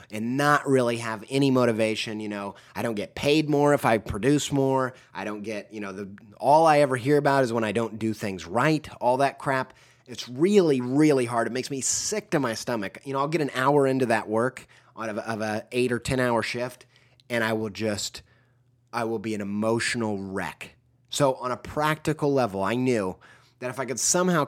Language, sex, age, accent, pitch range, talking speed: English, male, 30-49, American, 110-140 Hz, 220 wpm